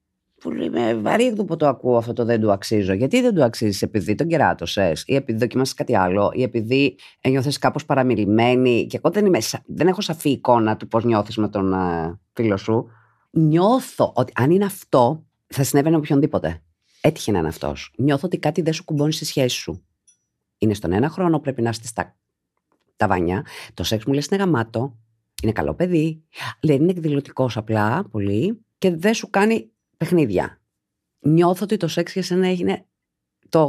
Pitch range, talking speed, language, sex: 110-160 Hz, 180 wpm, Greek, female